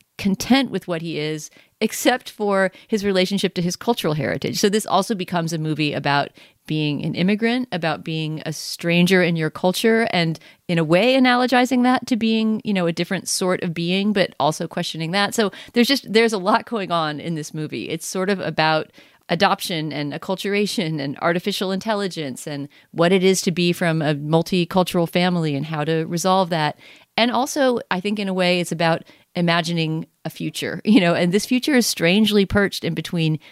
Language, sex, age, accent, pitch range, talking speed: English, female, 30-49, American, 155-195 Hz, 190 wpm